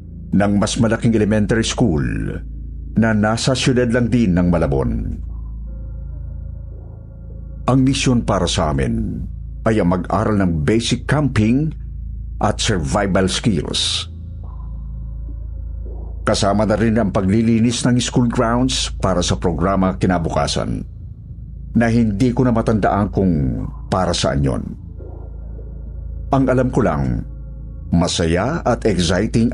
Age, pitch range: 50-69, 75-110 Hz